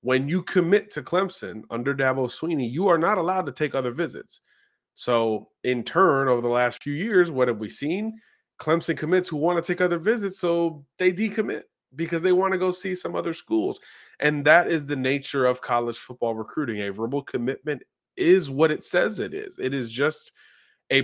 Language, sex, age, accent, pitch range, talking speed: English, male, 30-49, American, 120-160 Hz, 200 wpm